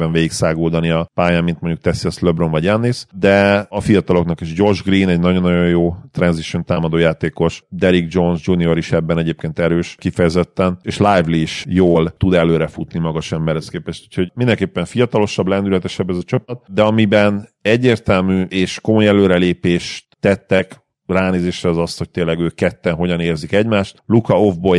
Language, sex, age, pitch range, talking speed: Hungarian, male, 40-59, 85-100 Hz, 155 wpm